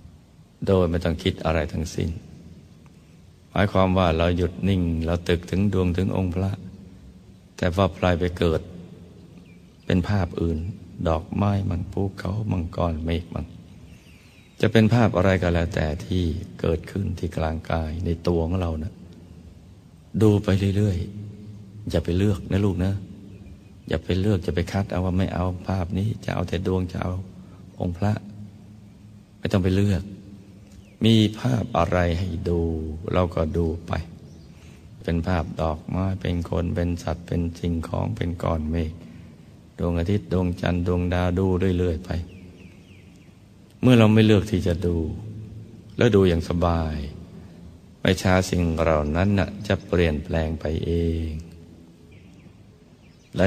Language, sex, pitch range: Thai, male, 85-95 Hz